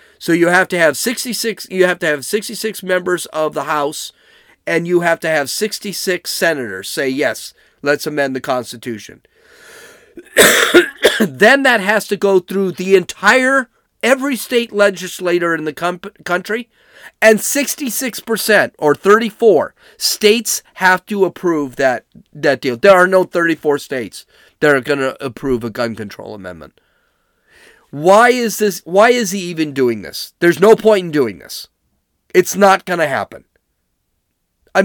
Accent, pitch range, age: American, 140-215 Hz, 40-59